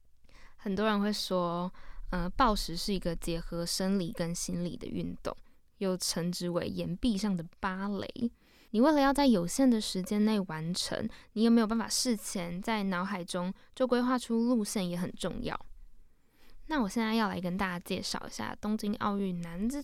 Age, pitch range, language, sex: 10-29, 185-240 Hz, Chinese, female